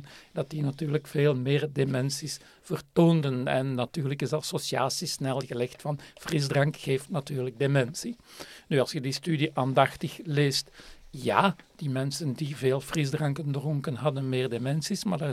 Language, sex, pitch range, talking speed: Dutch, male, 140-170 Hz, 145 wpm